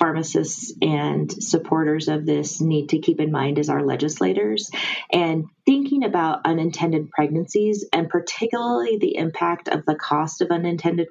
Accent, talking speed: American, 145 wpm